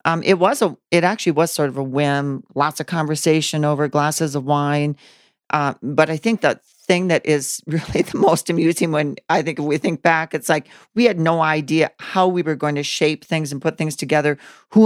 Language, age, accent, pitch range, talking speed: English, 40-59, American, 150-175 Hz, 220 wpm